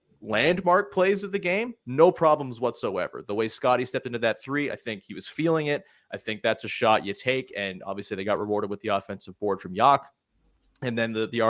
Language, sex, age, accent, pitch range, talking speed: English, male, 30-49, American, 105-150 Hz, 225 wpm